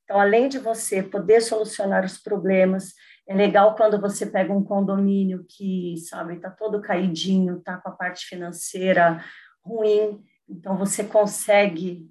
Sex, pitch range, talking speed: female, 185-220 Hz, 145 wpm